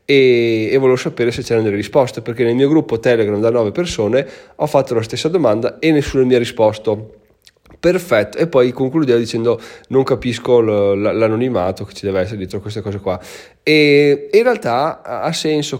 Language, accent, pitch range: Italian, native, 110-140 Hz